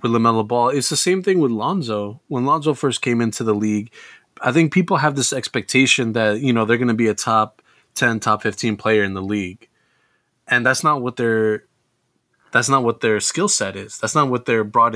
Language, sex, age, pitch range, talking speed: English, male, 20-39, 105-130 Hz, 220 wpm